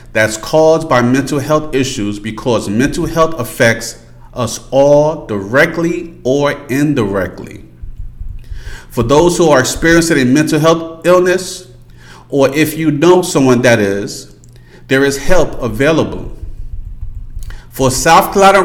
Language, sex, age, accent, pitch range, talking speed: English, male, 40-59, American, 110-160 Hz, 120 wpm